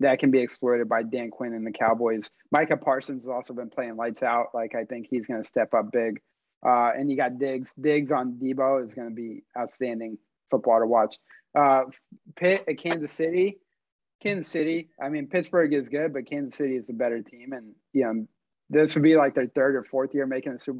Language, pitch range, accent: English, 125-155 Hz, American